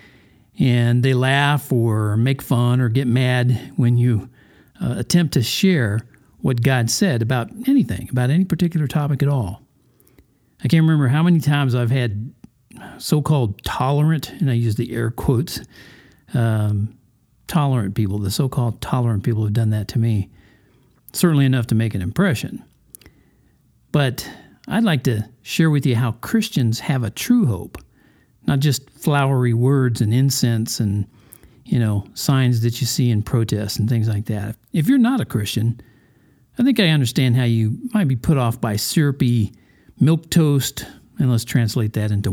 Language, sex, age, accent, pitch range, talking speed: English, male, 50-69, American, 115-145 Hz, 165 wpm